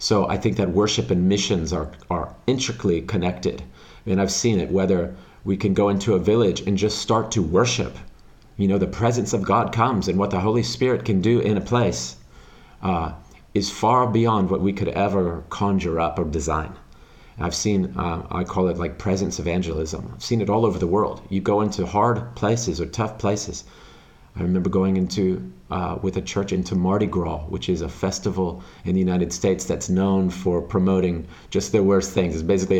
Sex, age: male, 40-59